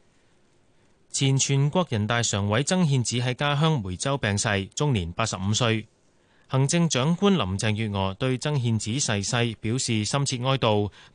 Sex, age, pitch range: male, 30-49, 105-140 Hz